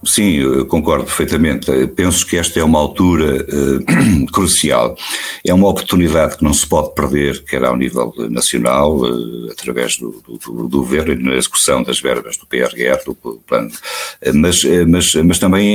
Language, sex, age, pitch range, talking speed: Portuguese, male, 60-79, 70-100 Hz, 145 wpm